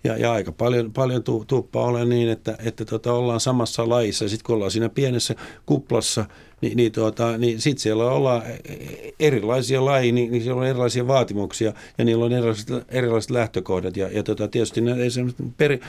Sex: male